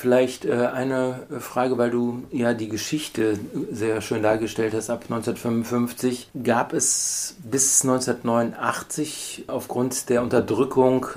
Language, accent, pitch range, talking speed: German, German, 115-135 Hz, 115 wpm